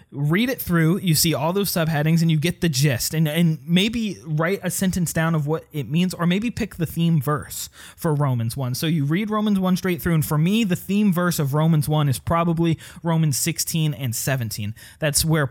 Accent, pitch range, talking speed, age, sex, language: American, 135-170 Hz, 220 wpm, 20-39, male, English